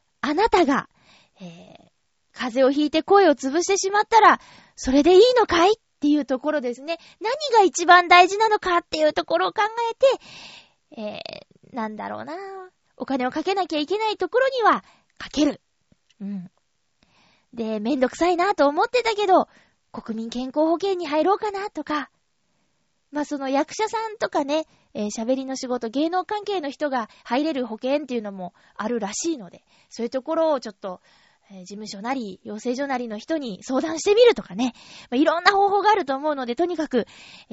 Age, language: 20-39, Japanese